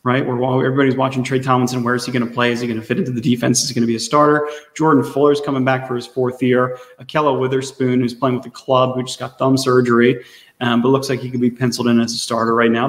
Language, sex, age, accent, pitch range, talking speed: English, male, 30-49, American, 125-145 Hz, 285 wpm